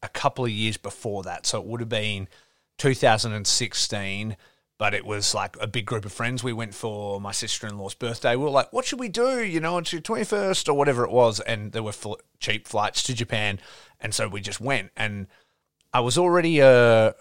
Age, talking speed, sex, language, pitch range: 30-49, 215 wpm, male, English, 95-115 Hz